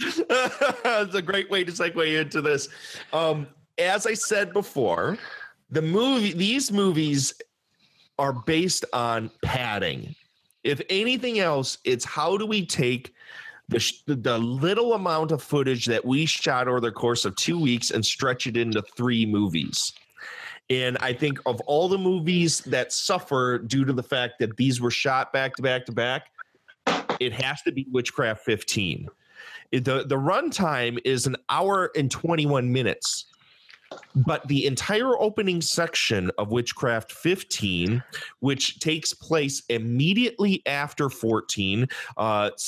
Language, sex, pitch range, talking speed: English, male, 120-175 Hz, 145 wpm